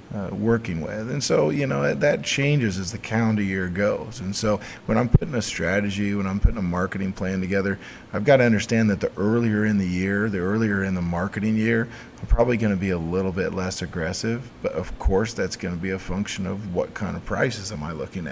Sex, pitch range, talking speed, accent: male, 90-105 Hz, 235 wpm, American